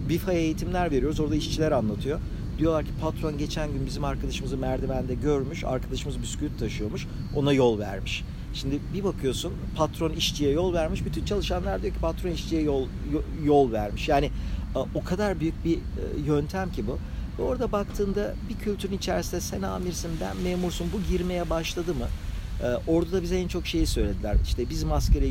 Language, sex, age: Turkish, male, 50-69